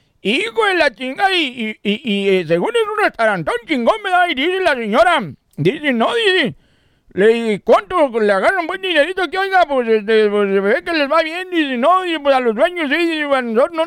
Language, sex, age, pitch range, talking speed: Spanish, male, 60-79, 225-365 Hz, 220 wpm